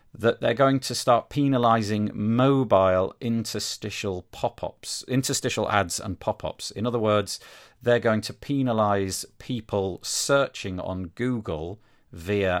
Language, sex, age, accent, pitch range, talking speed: English, male, 40-59, British, 85-115 Hz, 120 wpm